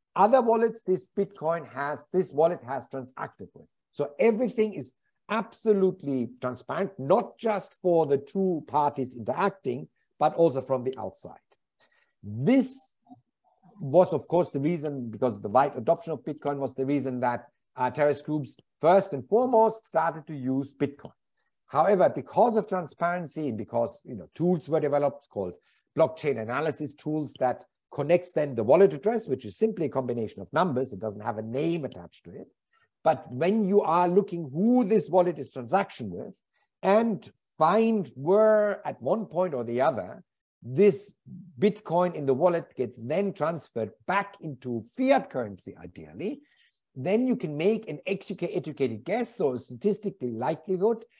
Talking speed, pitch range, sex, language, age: 155 wpm, 130-195 Hz, male, English, 60-79